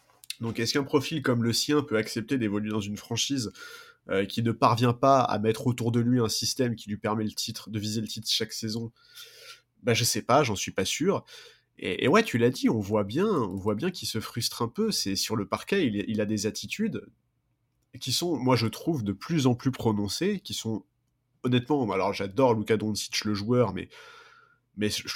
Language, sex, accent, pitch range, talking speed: French, male, French, 105-130 Hz, 210 wpm